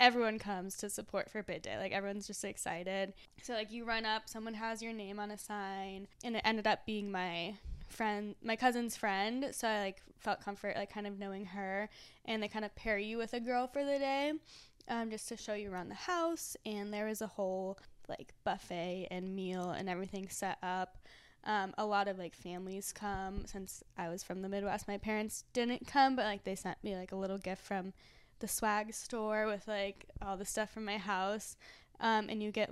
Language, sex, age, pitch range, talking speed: English, female, 10-29, 195-220 Hz, 215 wpm